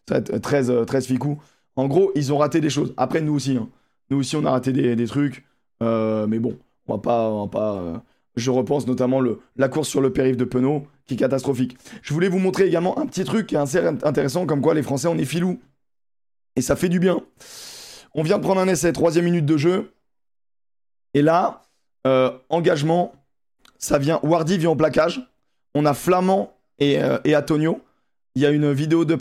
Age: 20-39